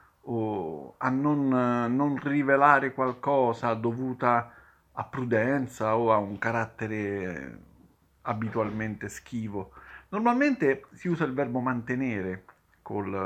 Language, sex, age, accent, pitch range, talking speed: Italian, male, 50-69, native, 110-145 Hz, 100 wpm